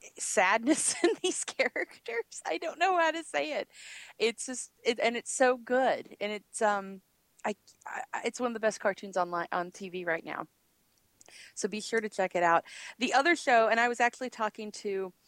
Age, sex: 30-49, female